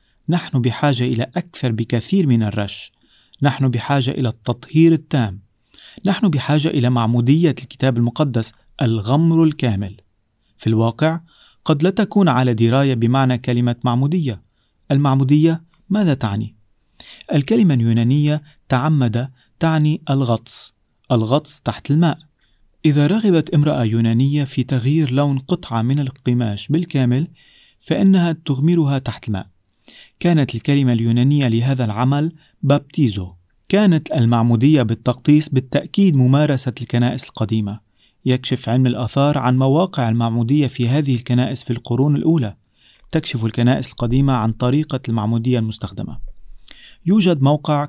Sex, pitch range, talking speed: male, 115-150 Hz, 115 wpm